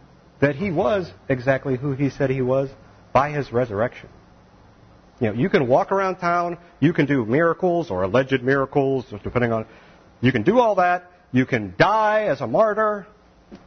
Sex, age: male, 40-59